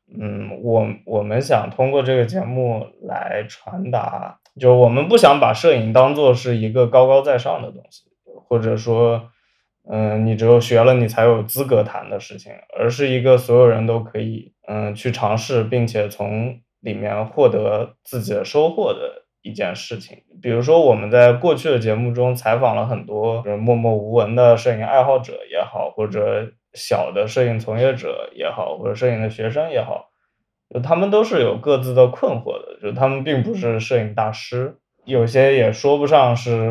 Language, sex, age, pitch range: Chinese, male, 20-39, 110-135 Hz